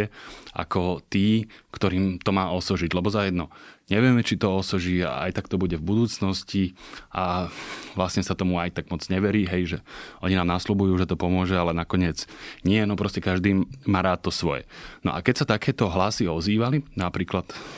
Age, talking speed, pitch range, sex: 30-49, 180 wpm, 90-100 Hz, male